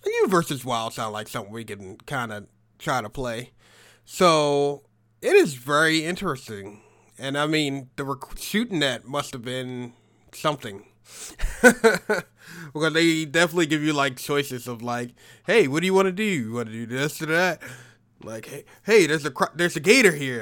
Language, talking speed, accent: English, 180 wpm, American